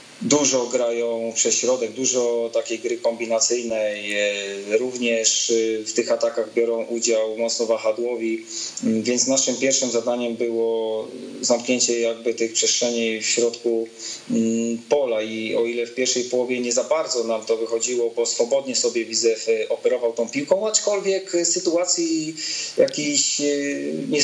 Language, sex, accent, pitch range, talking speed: Polish, male, native, 115-150 Hz, 125 wpm